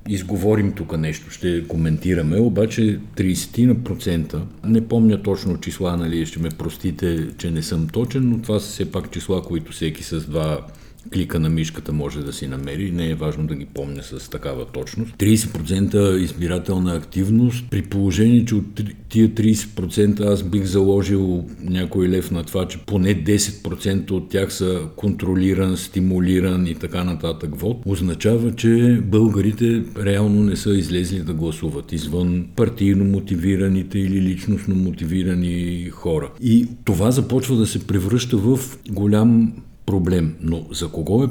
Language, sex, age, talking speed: Bulgarian, male, 50-69, 145 wpm